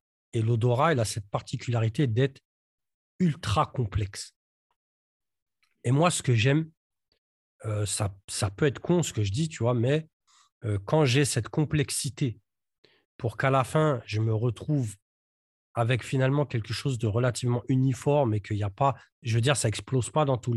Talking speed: 170 wpm